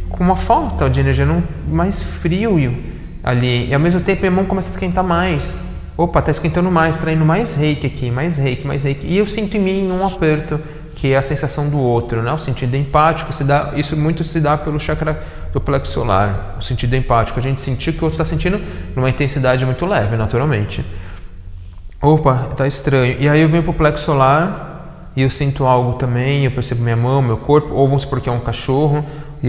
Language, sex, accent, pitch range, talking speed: Portuguese, male, Brazilian, 125-170 Hz, 210 wpm